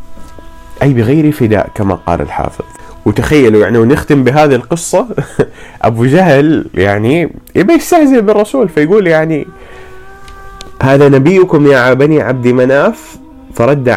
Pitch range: 110-160 Hz